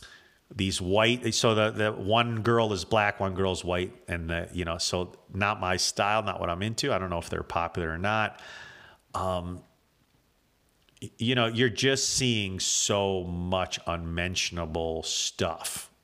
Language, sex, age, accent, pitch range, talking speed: English, male, 40-59, American, 90-115 Hz, 155 wpm